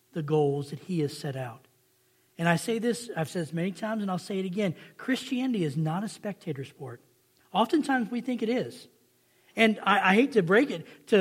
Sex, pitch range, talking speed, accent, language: male, 155-235 Hz, 215 wpm, American, English